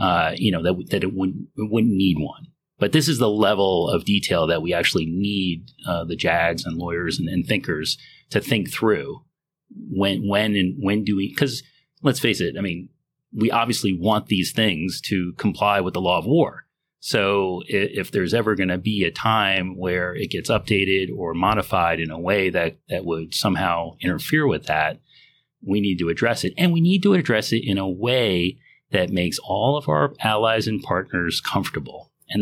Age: 30-49